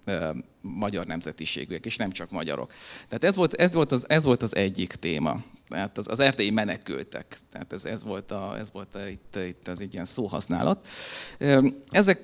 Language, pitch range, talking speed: Hungarian, 110-135 Hz, 180 wpm